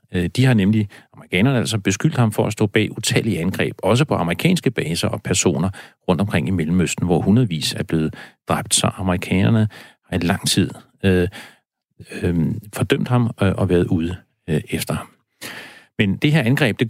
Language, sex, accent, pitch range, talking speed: Danish, male, native, 95-115 Hz, 175 wpm